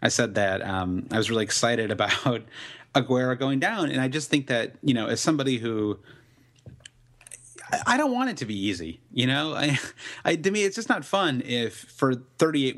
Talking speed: 200 wpm